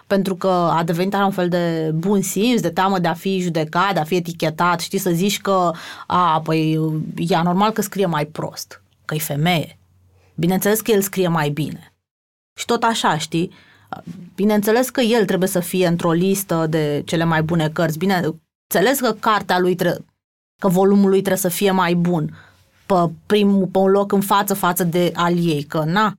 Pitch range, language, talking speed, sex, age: 170-210 Hz, Romanian, 190 wpm, female, 20-39